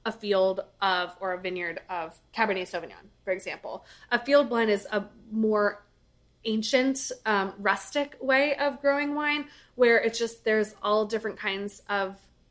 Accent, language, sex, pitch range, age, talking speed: American, English, female, 195-245 Hz, 20-39, 155 wpm